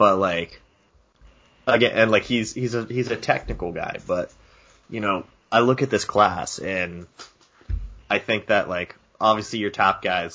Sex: male